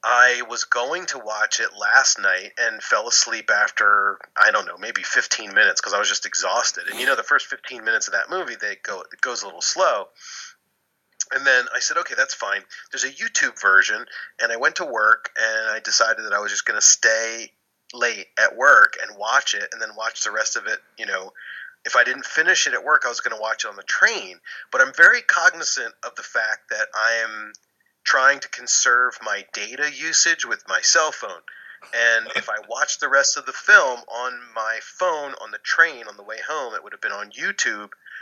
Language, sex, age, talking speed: English, male, 30-49, 225 wpm